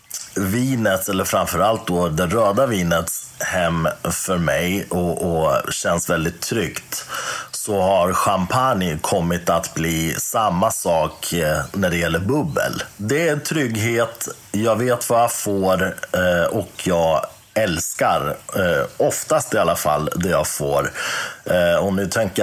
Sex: male